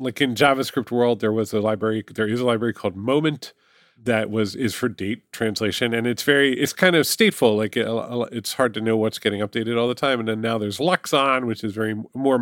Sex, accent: male, American